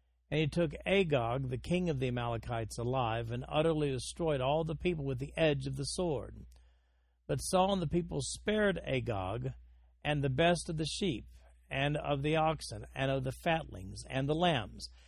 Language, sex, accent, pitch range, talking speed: English, male, American, 115-155 Hz, 185 wpm